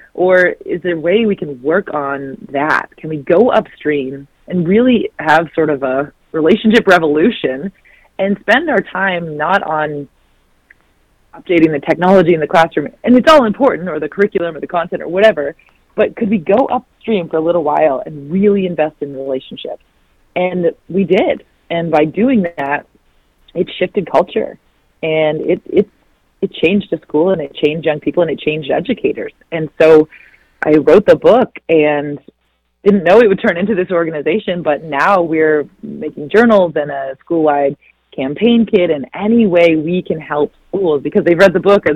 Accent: American